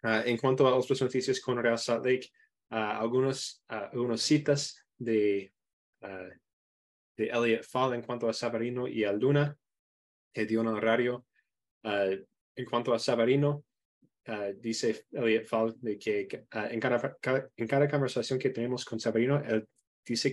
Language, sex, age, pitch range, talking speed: Spanish, male, 20-39, 110-130 Hz, 155 wpm